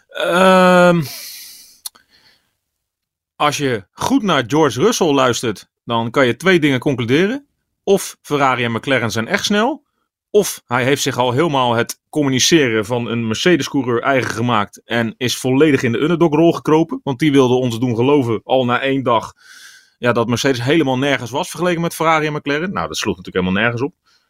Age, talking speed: 30-49, 170 wpm